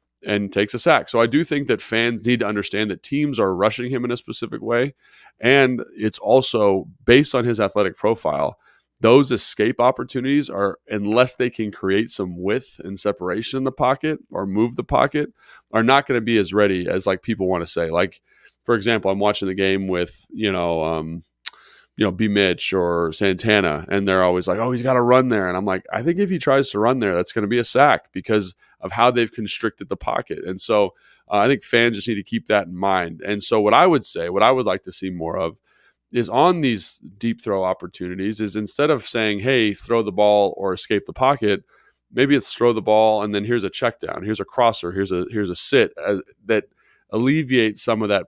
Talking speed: 225 wpm